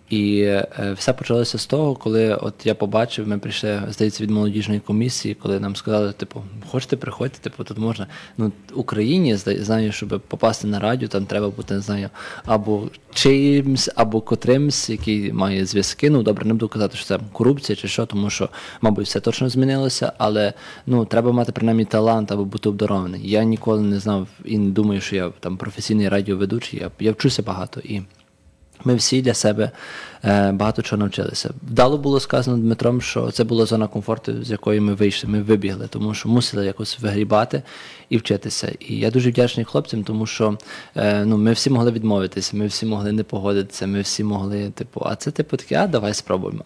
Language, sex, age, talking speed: English, male, 20-39, 190 wpm